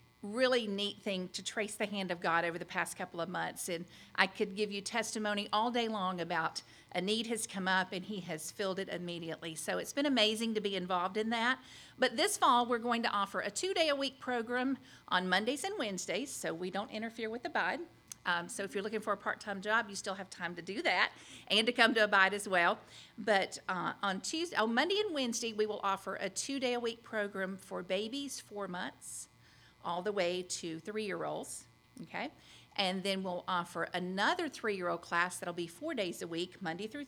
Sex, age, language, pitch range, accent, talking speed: female, 50-69, English, 190-235 Hz, American, 215 wpm